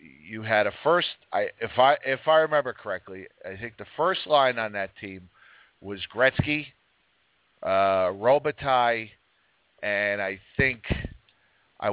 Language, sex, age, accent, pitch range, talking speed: English, male, 50-69, American, 100-155 Hz, 135 wpm